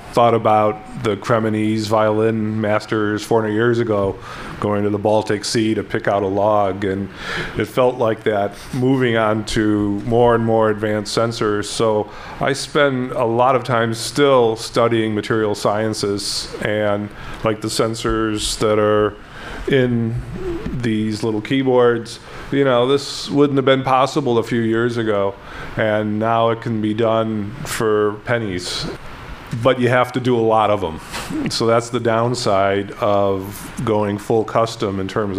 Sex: male